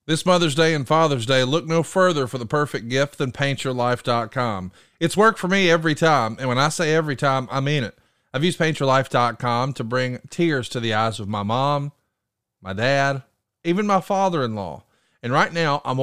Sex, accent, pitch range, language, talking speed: male, American, 125-165 Hz, English, 205 wpm